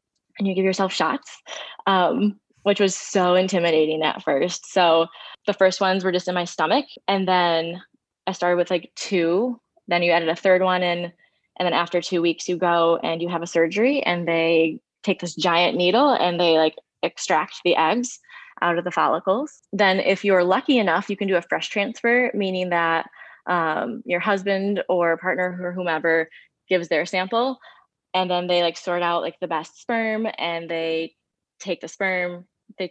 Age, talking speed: 20-39, 185 wpm